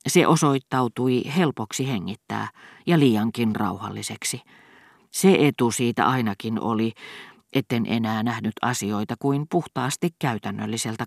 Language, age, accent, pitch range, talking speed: Finnish, 40-59, native, 115-135 Hz, 105 wpm